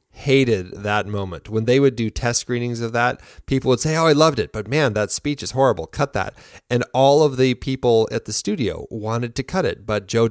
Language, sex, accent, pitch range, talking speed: English, male, American, 100-125 Hz, 235 wpm